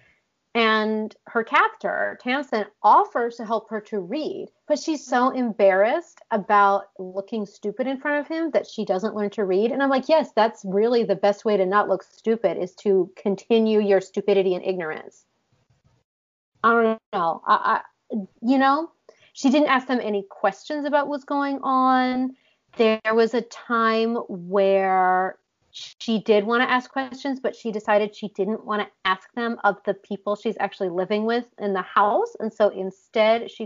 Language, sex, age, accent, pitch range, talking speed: English, female, 30-49, American, 195-255 Hz, 175 wpm